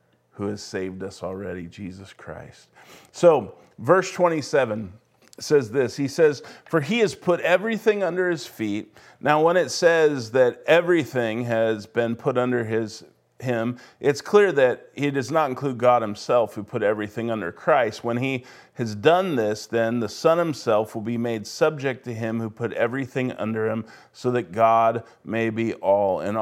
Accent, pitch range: American, 115-150 Hz